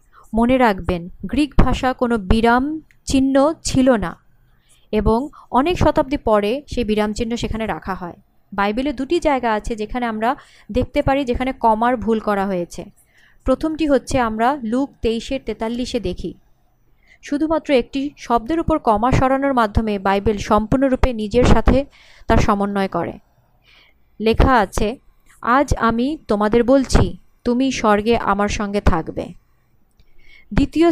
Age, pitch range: 30-49, 210-270 Hz